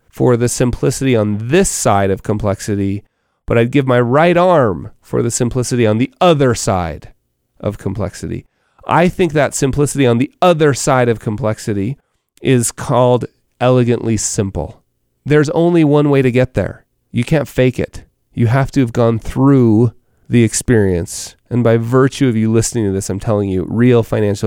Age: 30-49